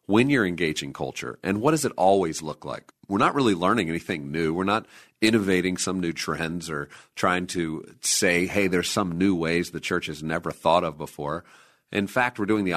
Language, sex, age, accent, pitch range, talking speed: English, male, 40-59, American, 90-110 Hz, 205 wpm